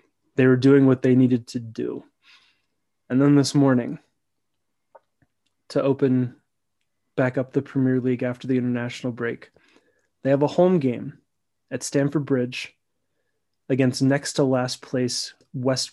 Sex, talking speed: male, 130 wpm